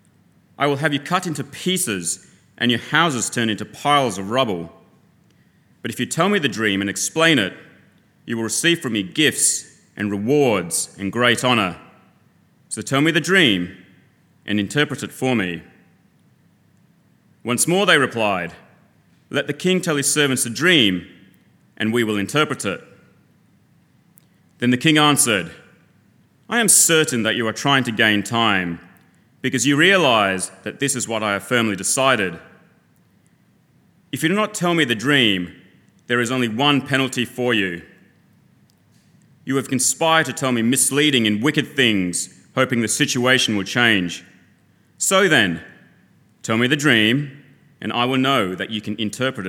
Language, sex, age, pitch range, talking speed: English, male, 30-49, 105-145 Hz, 160 wpm